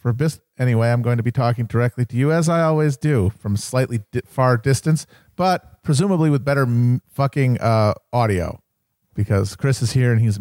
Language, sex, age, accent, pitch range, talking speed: English, male, 40-59, American, 100-130 Hz, 185 wpm